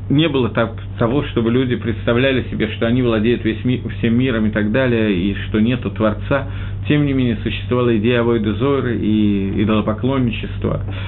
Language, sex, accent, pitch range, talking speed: Russian, male, native, 105-125 Hz, 170 wpm